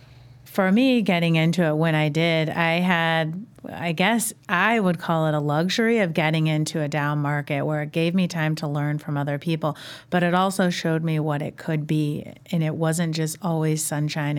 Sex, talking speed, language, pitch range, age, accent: female, 205 wpm, English, 150-175 Hz, 40-59, American